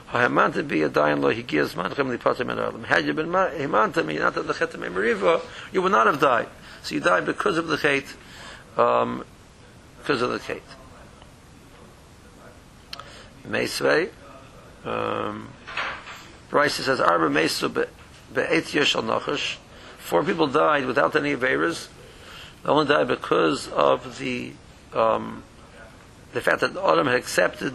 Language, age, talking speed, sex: English, 60-79, 80 wpm, male